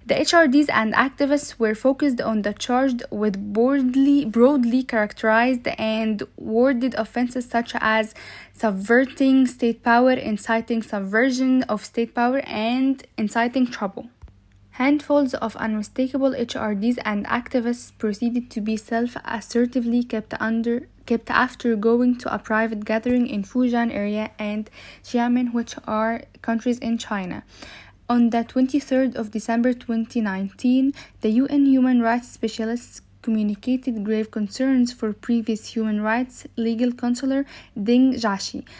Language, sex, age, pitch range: English, female, 10-29, 220-255 Hz